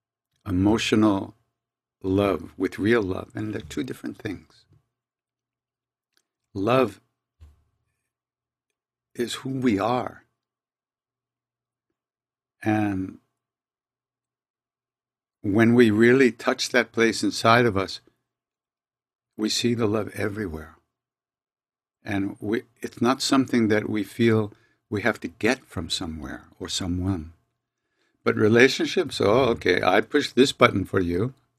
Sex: male